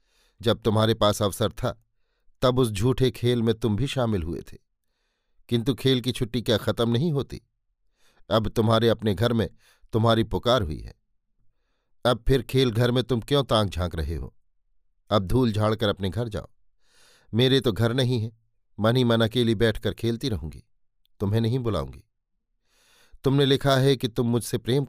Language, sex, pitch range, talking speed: Hindi, male, 105-120 Hz, 175 wpm